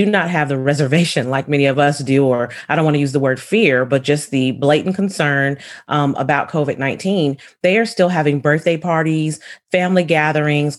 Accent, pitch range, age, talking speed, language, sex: American, 135-160 Hz, 30-49, 190 wpm, English, female